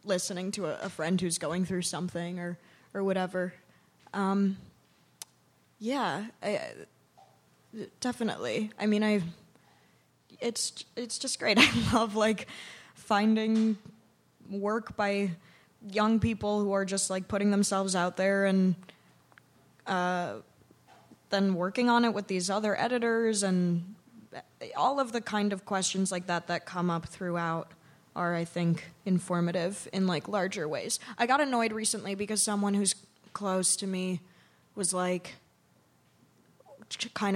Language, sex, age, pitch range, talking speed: English, female, 20-39, 170-205 Hz, 130 wpm